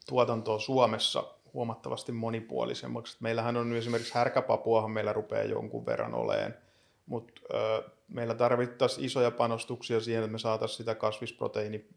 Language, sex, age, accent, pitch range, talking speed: Finnish, male, 30-49, native, 110-120 Hz, 120 wpm